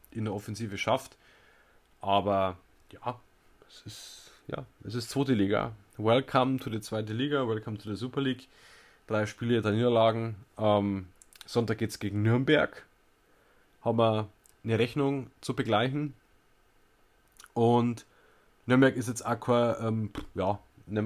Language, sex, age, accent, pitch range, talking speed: German, male, 20-39, German, 105-125 Hz, 135 wpm